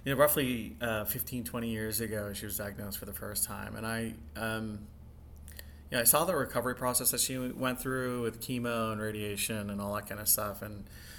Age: 30-49